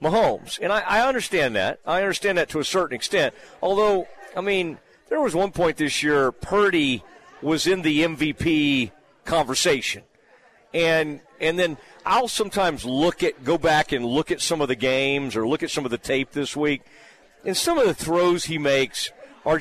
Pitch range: 150-200 Hz